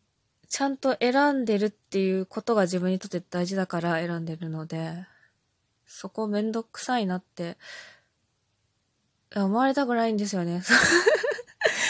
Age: 20-39